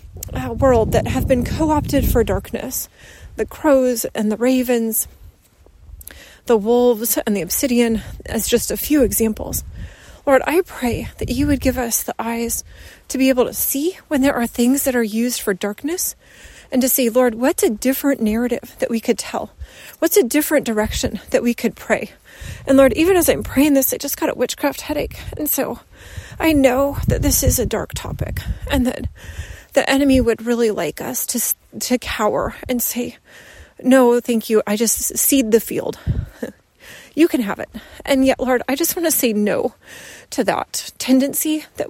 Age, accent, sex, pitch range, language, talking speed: 30-49, American, female, 230-280 Hz, English, 185 wpm